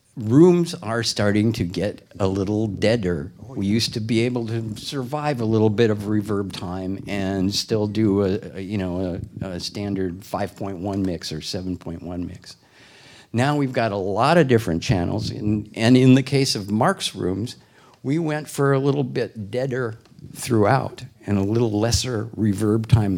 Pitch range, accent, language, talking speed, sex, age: 100-130 Hz, American, English, 170 wpm, male, 50-69